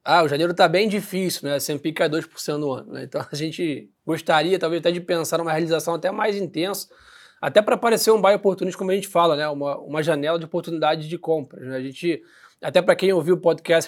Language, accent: Portuguese, Brazilian